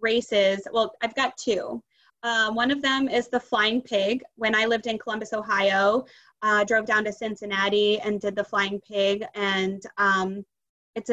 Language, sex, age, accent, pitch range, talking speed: English, female, 20-39, American, 205-235 Hz, 175 wpm